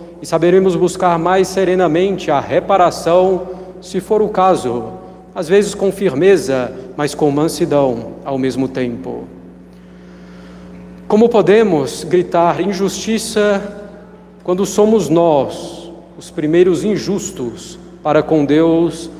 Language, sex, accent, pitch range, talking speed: Portuguese, male, Brazilian, 150-190 Hz, 105 wpm